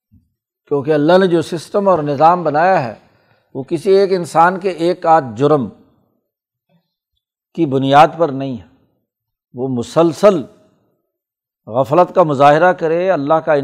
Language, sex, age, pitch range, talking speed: Urdu, male, 60-79, 145-185 Hz, 130 wpm